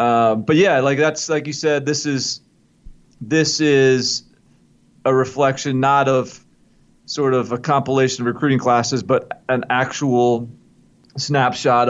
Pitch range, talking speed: 120-145 Hz, 135 wpm